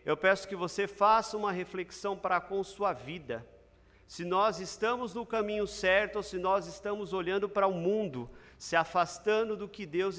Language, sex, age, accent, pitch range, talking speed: Portuguese, male, 50-69, Brazilian, 165-210 Hz, 175 wpm